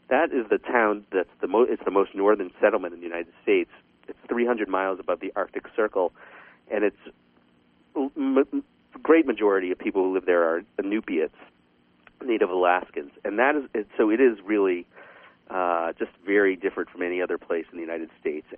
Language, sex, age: English, male, 40-59